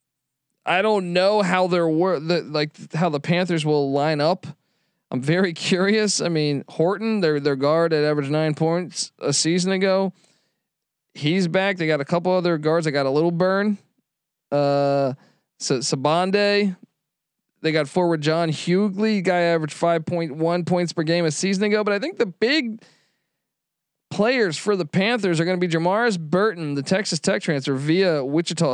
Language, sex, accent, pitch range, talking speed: English, male, American, 155-190 Hz, 175 wpm